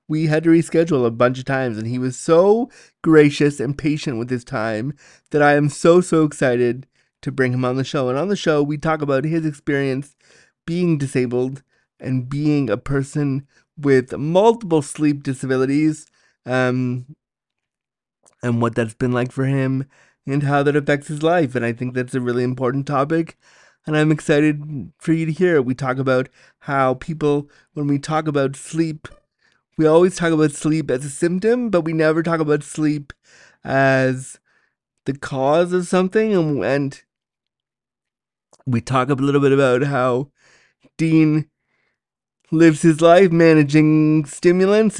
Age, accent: 30-49, American